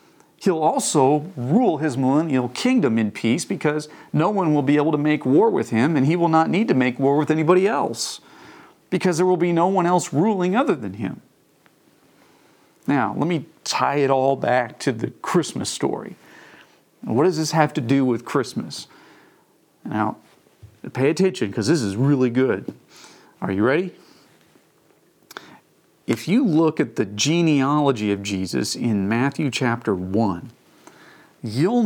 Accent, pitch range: American, 130-180 Hz